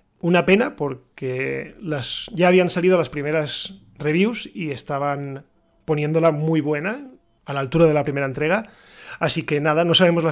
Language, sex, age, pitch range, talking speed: Spanish, male, 20-39, 140-170 Hz, 155 wpm